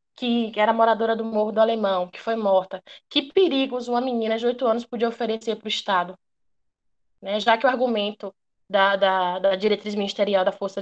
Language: Portuguese